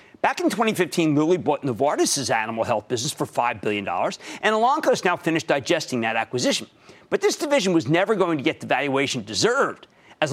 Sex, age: male, 40-59